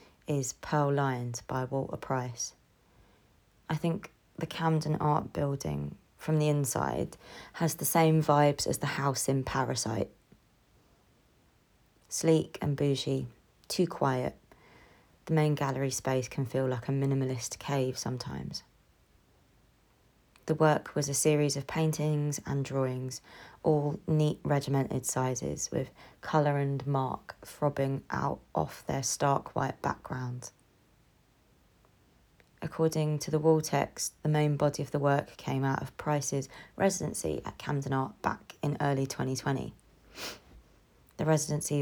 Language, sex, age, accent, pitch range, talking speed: English, female, 20-39, British, 130-150 Hz, 130 wpm